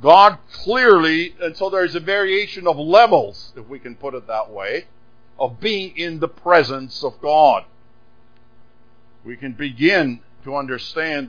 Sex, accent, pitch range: male, American, 120-160 Hz